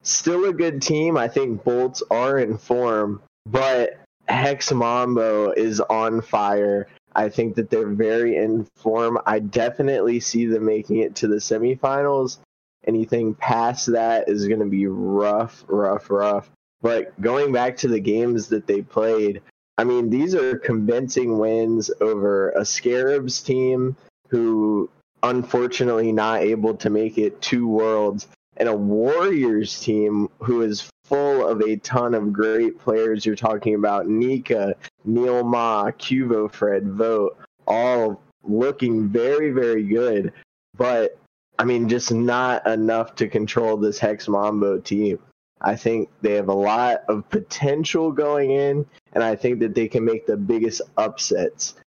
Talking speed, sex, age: 150 wpm, male, 20-39